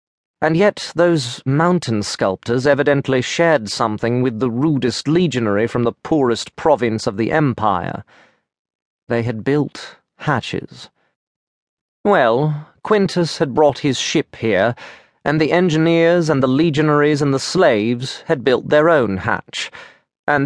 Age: 30-49